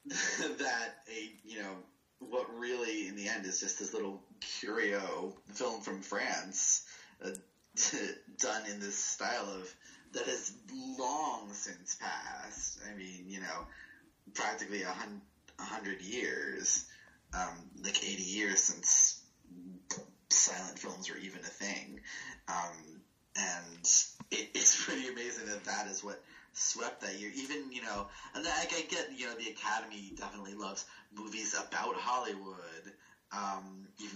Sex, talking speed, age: male, 135 wpm, 30-49